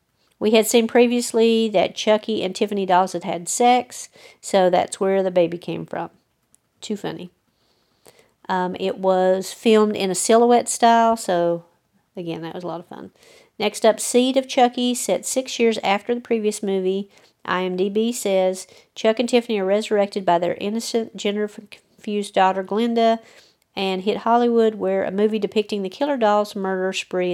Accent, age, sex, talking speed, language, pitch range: American, 50-69, female, 160 wpm, English, 185-230 Hz